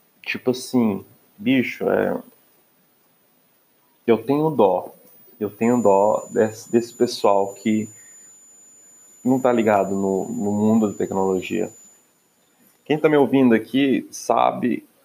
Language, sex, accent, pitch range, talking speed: Portuguese, male, Brazilian, 100-120 Hz, 110 wpm